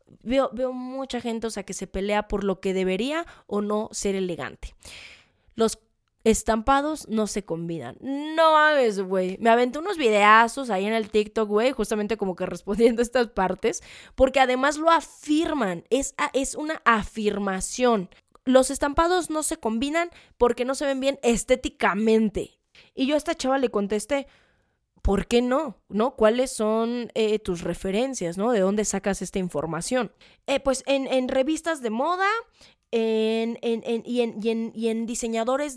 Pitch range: 195-255 Hz